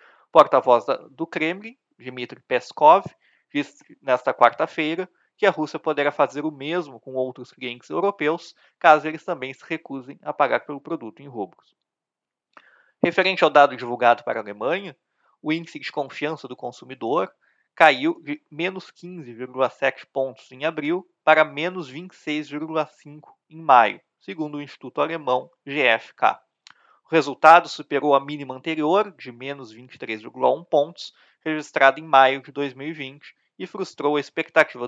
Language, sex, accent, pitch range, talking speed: Portuguese, male, Brazilian, 135-165 Hz, 135 wpm